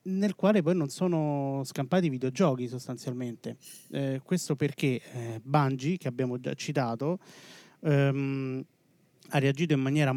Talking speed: 135 wpm